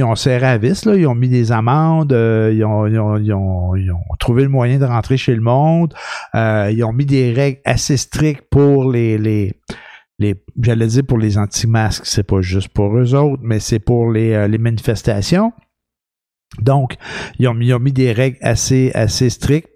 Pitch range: 110-135 Hz